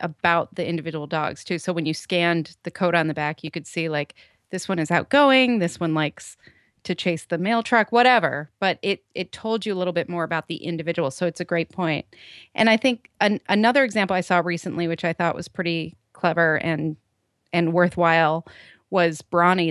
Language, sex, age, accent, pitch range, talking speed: English, female, 30-49, American, 165-185 Hz, 210 wpm